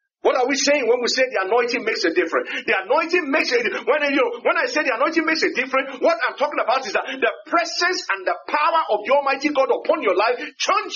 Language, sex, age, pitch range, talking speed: English, male, 40-59, 265-360 Hz, 245 wpm